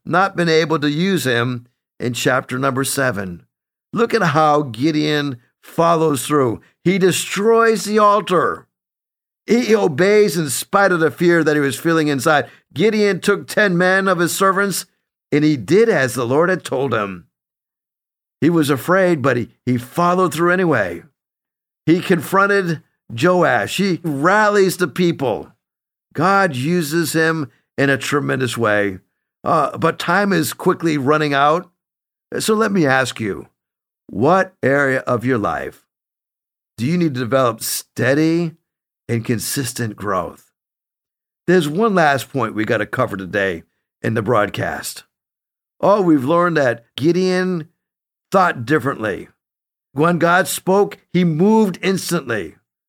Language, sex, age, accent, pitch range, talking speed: English, male, 50-69, American, 135-185 Hz, 140 wpm